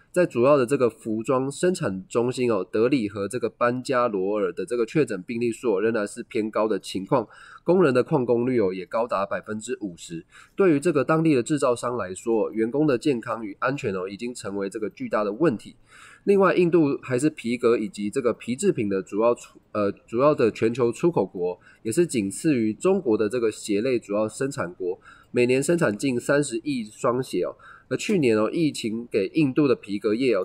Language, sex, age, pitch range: Chinese, male, 20-39, 110-155 Hz